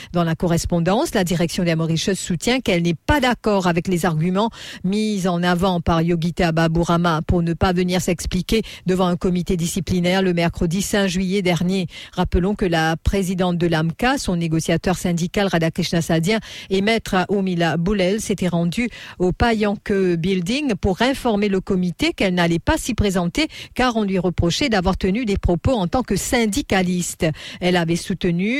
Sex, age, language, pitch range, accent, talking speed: female, 50-69, English, 175-215 Hz, French, 165 wpm